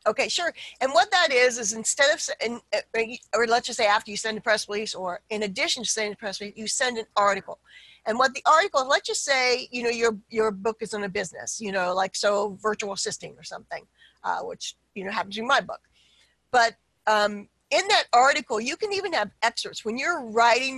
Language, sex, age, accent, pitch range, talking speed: English, female, 50-69, American, 210-255 Hz, 220 wpm